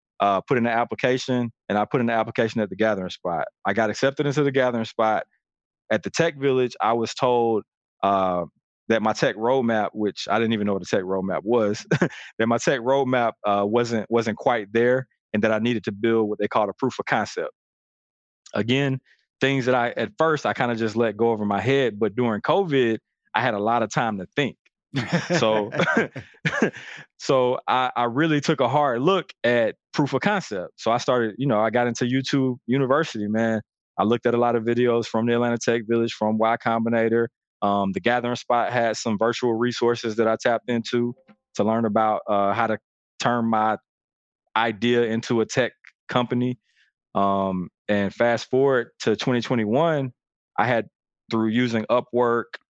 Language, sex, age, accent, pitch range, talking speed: English, male, 20-39, American, 110-125 Hz, 190 wpm